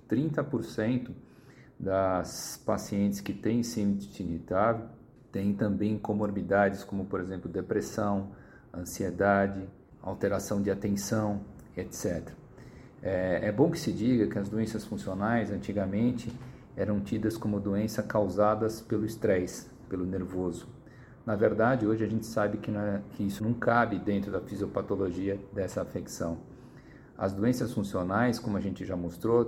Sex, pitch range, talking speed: male, 100-120 Hz, 125 wpm